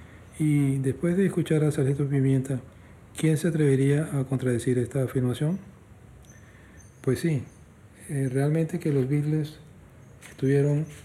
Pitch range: 120-140 Hz